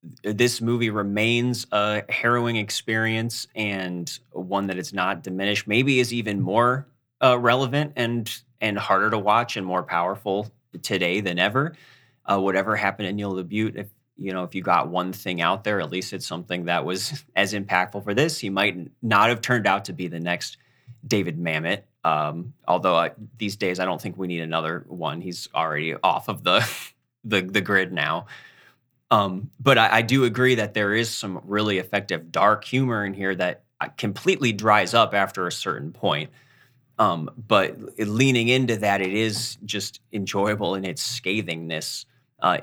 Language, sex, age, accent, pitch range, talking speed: English, male, 20-39, American, 95-120 Hz, 175 wpm